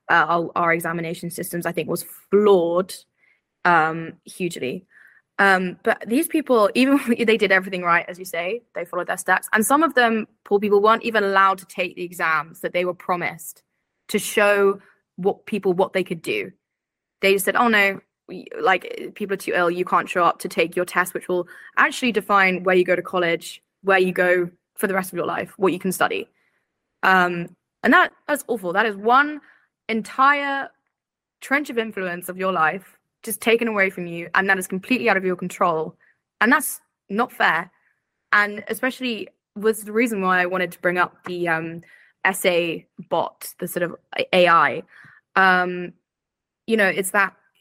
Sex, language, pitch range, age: female, English, 180-225 Hz, 10-29